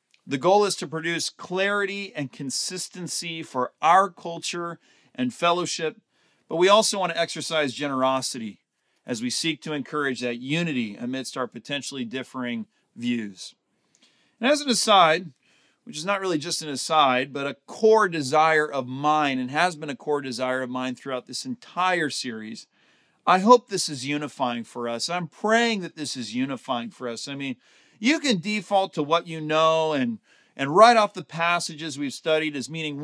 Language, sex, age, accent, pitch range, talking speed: English, male, 40-59, American, 140-185 Hz, 175 wpm